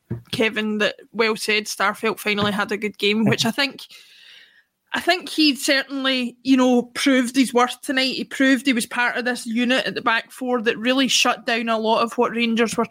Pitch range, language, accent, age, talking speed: 230-280 Hz, English, British, 20-39, 210 wpm